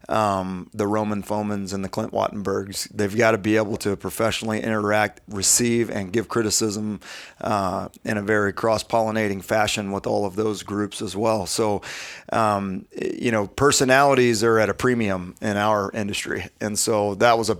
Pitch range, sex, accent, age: 105-120 Hz, male, American, 30-49